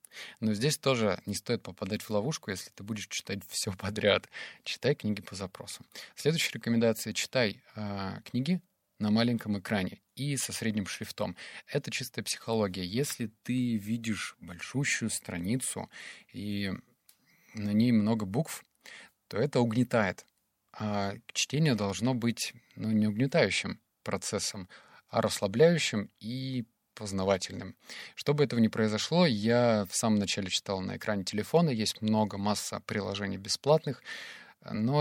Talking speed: 130 wpm